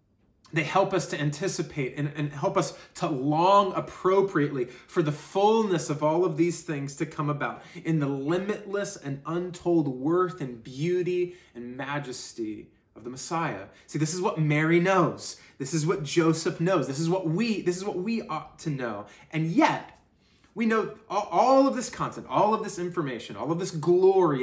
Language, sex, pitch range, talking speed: English, male, 135-180 Hz, 180 wpm